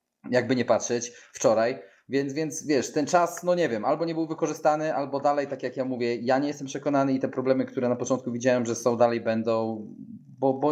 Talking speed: 220 wpm